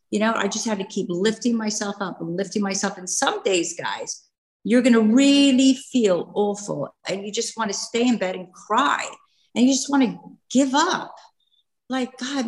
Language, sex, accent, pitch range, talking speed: English, female, American, 185-265 Hz, 200 wpm